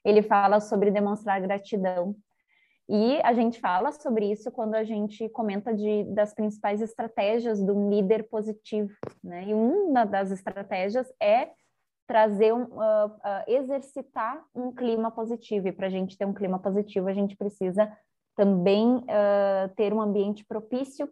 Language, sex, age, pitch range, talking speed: Portuguese, female, 20-39, 185-225 Hz, 150 wpm